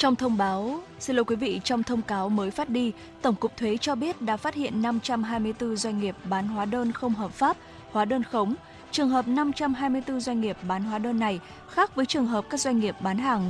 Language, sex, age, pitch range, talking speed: Vietnamese, female, 10-29, 205-250 Hz, 225 wpm